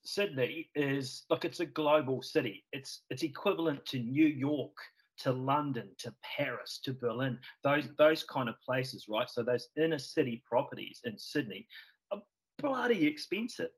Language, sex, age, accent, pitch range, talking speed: English, male, 40-59, Australian, 120-150 Hz, 155 wpm